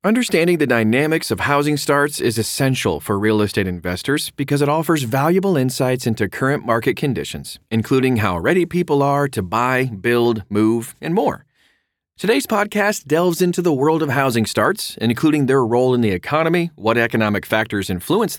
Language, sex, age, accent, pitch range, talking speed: English, male, 30-49, American, 100-145 Hz, 165 wpm